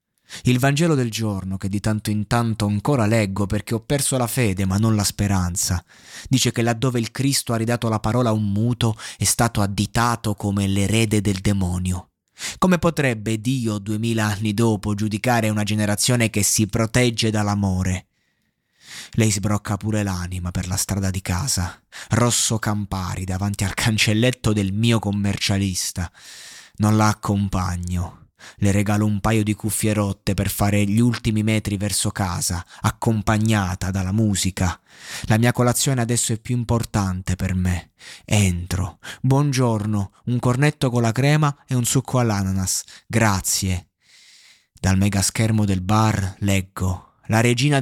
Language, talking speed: Italian, 150 wpm